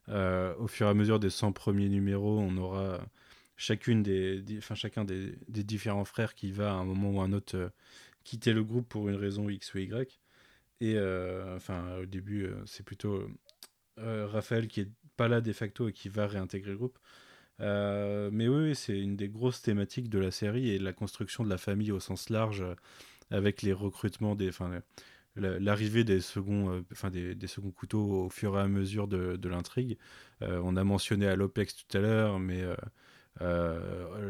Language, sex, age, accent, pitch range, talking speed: French, male, 20-39, French, 95-110 Hz, 205 wpm